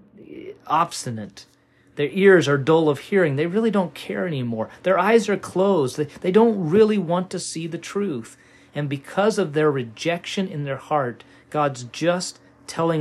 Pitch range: 120-180 Hz